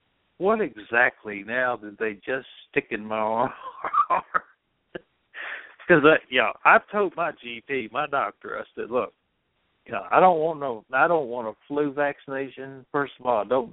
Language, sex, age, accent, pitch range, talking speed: English, male, 60-79, American, 110-135 Hz, 175 wpm